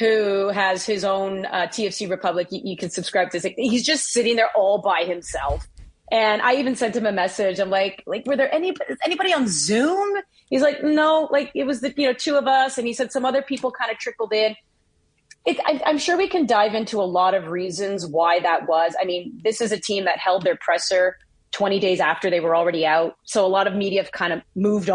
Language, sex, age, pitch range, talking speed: English, female, 30-49, 190-265 Hz, 240 wpm